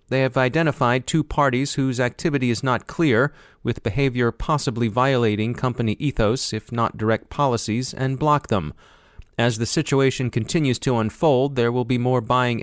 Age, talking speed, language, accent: 30-49, 160 wpm, English, American